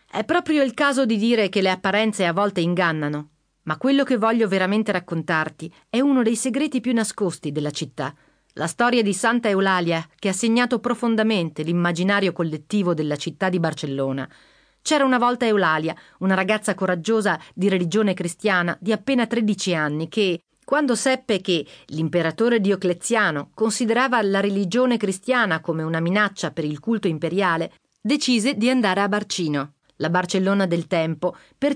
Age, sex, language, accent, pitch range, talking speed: 40-59, female, Italian, native, 175-240 Hz, 155 wpm